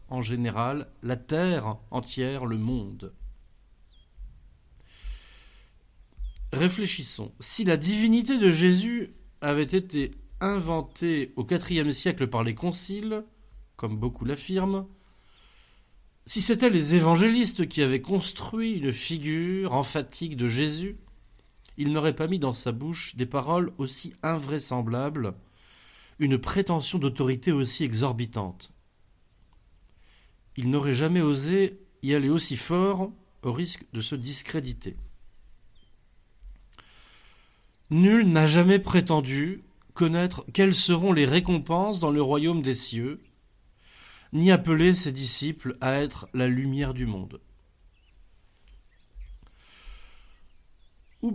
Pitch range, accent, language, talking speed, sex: 115-170 Hz, French, French, 105 wpm, male